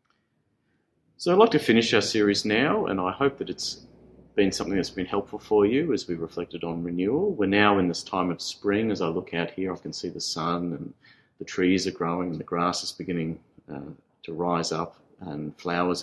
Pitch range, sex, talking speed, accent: 85-100 Hz, male, 215 wpm, Australian